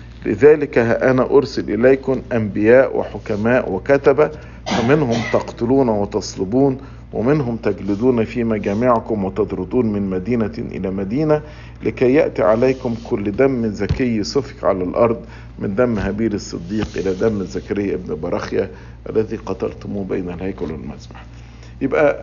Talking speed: 115 wpm